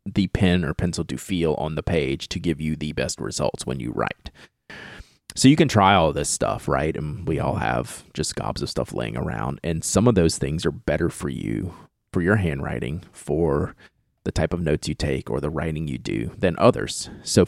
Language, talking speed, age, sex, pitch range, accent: English, 215 wpm, 30-49, male, 80-100 Hz, American